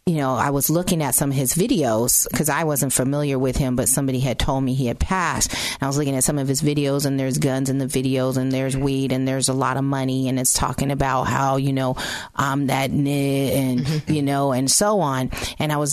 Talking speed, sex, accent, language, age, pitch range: 245 wpm, female, American, English, 30-49, 135-160 Hz